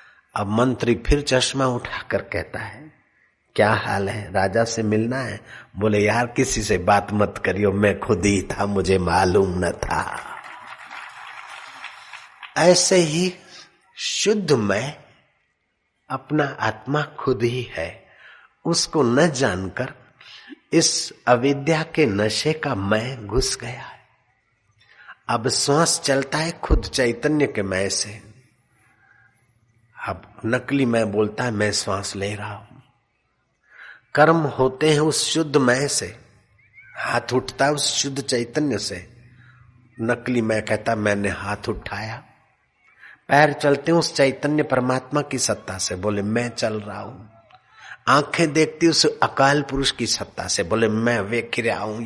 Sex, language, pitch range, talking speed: male, Hindi, 110-140 Hz, 135 wpm